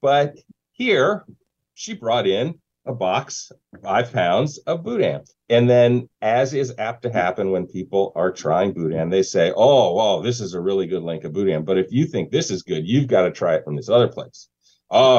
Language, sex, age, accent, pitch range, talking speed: English, male, 40-59, American, 90-130 Hz, 210 wpm